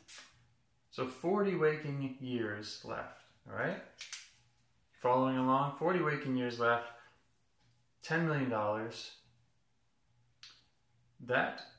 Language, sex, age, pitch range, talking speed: English, male, 30-49, 120-135 Hz, 80 wpm